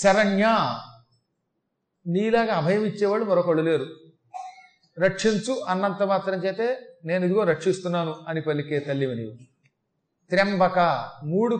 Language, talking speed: Telugu, 95 wpm